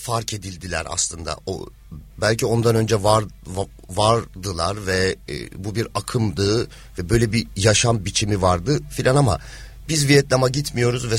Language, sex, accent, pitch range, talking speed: Turkish, male, native, 105-145 Hz, 125 wpm